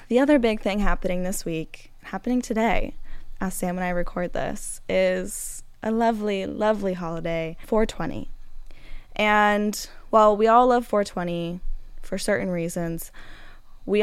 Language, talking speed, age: English, 135 wpm, 10-29